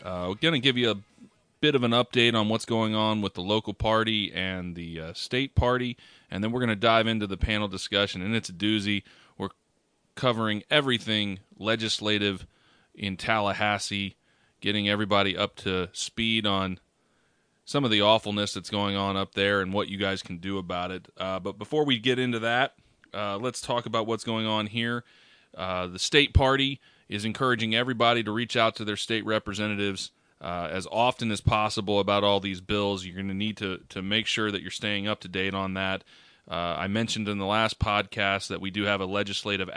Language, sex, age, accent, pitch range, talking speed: English, male, 30-49, American, 95-110 Hz, 200 wpm